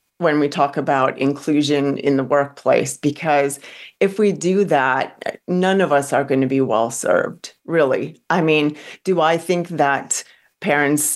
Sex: female